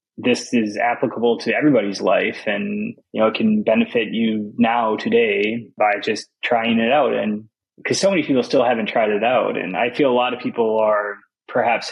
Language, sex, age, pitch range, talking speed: English, male, 20-39, 110-130 Hz, 195 wpm